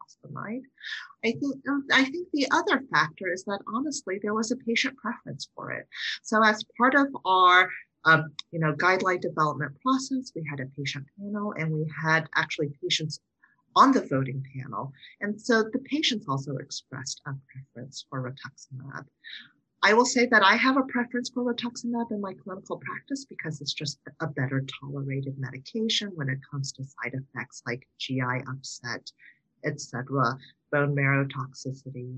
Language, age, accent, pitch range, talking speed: English, 40-59, American, 140-215 Hz, 160 wpm